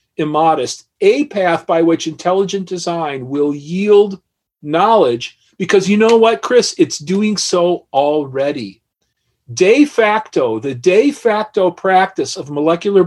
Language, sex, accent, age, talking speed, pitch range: English, male, American, 40-59, 125 wpm, 160-210 Hz